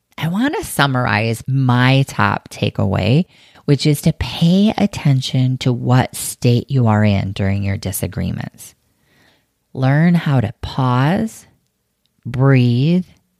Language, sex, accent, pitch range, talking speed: English, female, American, 115-145 Hz, 115 wpm